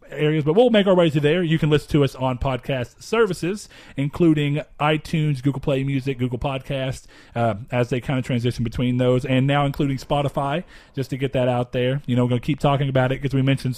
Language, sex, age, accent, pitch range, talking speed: English, male, 40-59, American, 125-155 Hz, 230 wpm